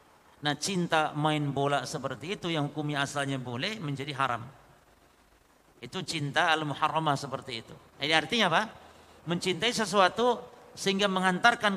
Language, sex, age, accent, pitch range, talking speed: Indonesian, male, 50-69, native, 140-185 Hz, 120 wpm